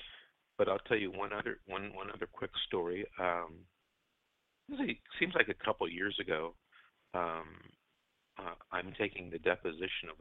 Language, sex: English, male